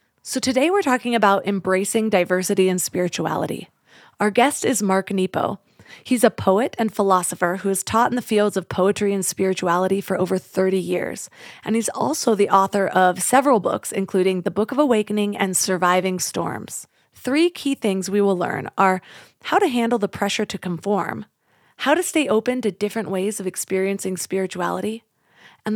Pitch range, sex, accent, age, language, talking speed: 185-225 Hz, female, American, 30-49, English, 170 wpm